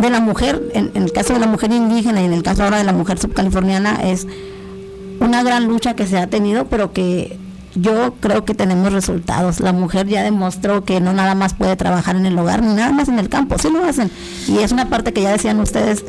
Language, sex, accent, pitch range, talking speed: Spanish, female, American, 185-220 Hz, 245 wpm